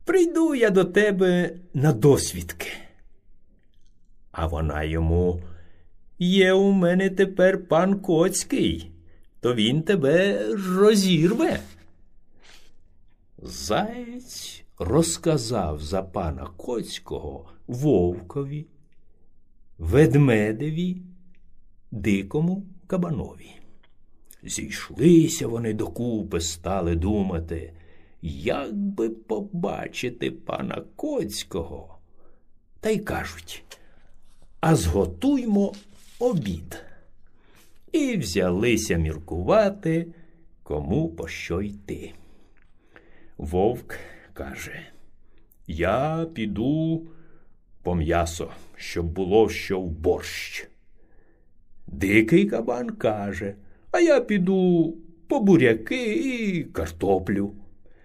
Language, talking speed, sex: Ukrainian, 75 wpm, male